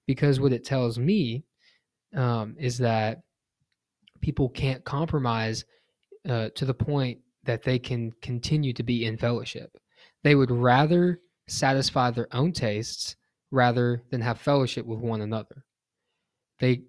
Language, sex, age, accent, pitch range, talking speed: English, male, 20-39, American, 115-135 Hz, 135 wpm